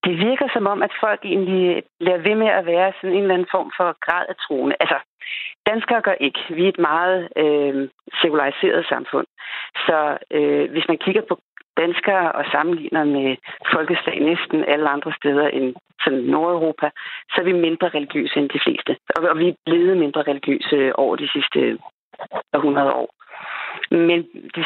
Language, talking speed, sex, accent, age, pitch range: Danish, 175 wpm, female, native, 40-59, 155-200 Hz